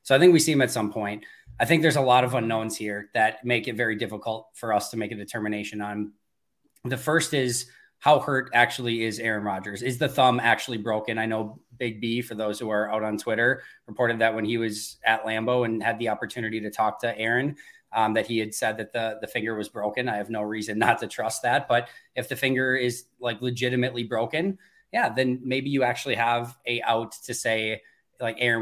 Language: English